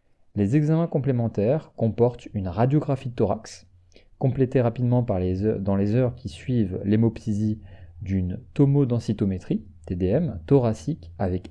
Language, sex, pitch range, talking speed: French, male, 95-125 Hz, 125 wpm